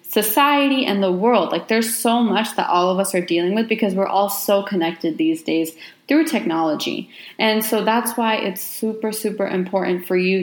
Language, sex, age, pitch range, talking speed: English, female, 20-39, 180-225 Hz, 195 wpm